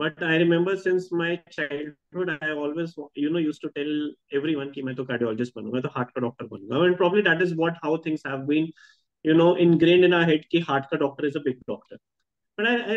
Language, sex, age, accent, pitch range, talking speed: Hindi, male, 30-49, native, 145-180 Hz, 240 wpm